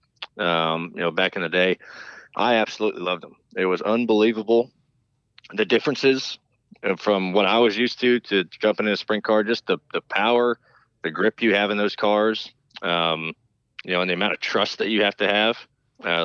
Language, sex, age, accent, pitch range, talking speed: English, male, 20-39, American, 90-115 Hz, 195 wpm